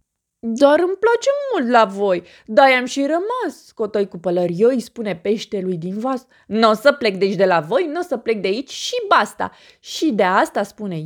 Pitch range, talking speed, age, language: 190-270 Hz, 205 wpm, 20-39, Romanian